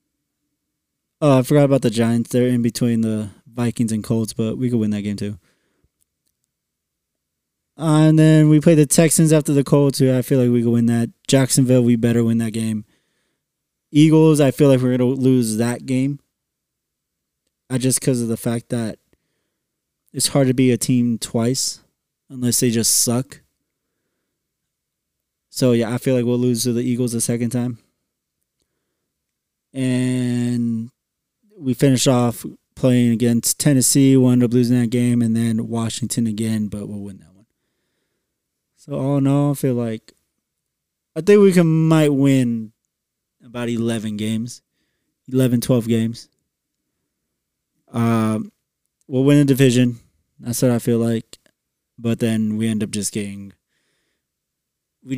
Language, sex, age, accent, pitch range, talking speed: English, male, 20-39, American, 115-135 Hz, 155 wpm